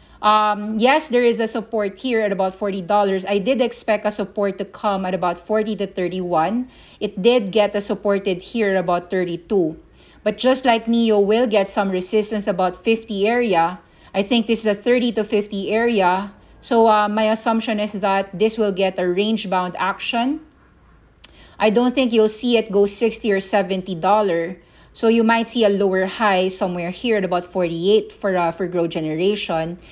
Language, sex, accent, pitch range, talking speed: English, female, Filipino, 180-215 Hz, 185 wpm